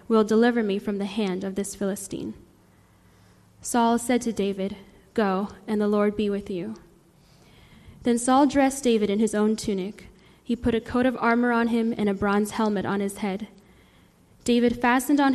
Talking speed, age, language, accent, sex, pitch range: 180 wpm, 10-29, English, American, female, 200-240 Hz